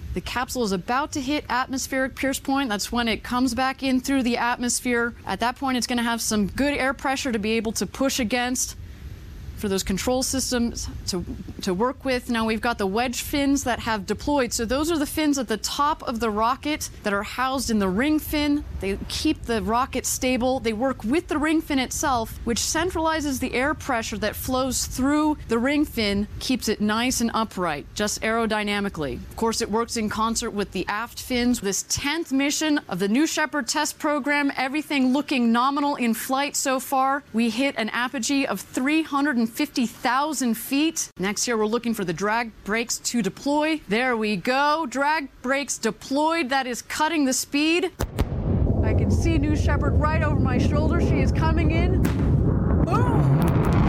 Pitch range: 220-290 Hz